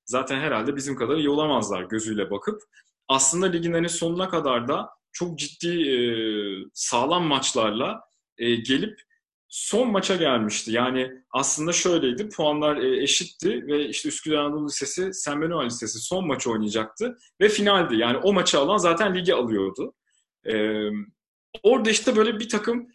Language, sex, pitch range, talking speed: Turkish, male, 130-180 Hz, 130 wpm